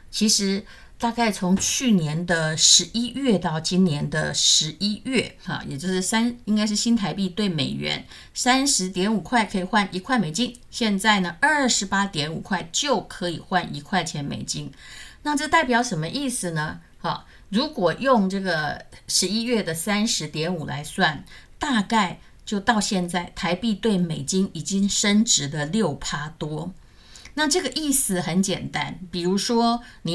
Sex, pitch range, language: female, 175-230 Hz, Chinese